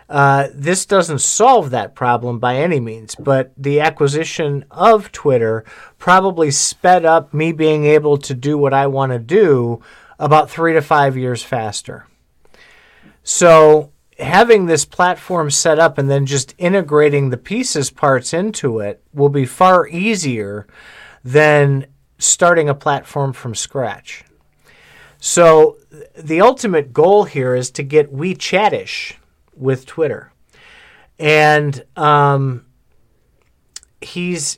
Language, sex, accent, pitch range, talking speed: English, male, American, 135-170 Hz, 125 wpm